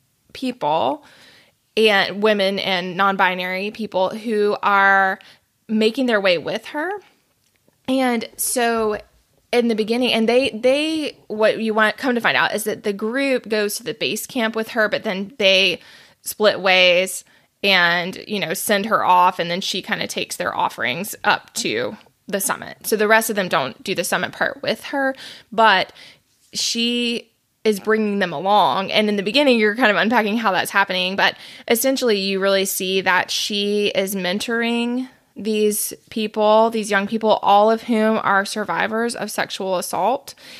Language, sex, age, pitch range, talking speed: English, female, 20-39, 195-225 Hz, 165 wpm